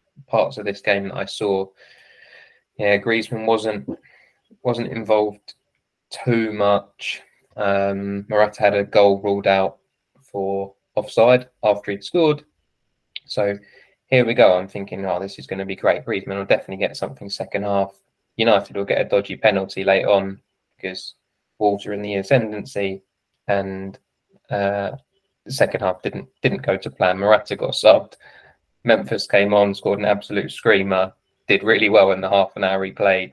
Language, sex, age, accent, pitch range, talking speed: English, male, 20-39, British, 95-110 Hz, 160 wpm